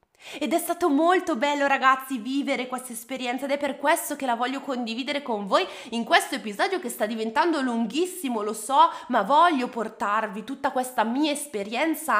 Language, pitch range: Italian, 215-290 Hz